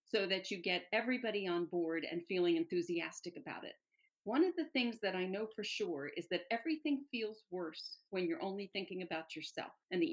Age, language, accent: 50-69, English, American